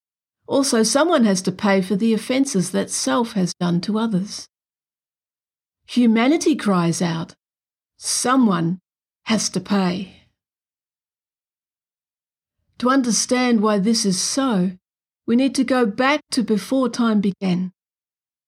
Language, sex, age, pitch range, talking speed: English, female, 50-69, 185-240 Hz, 115 wpm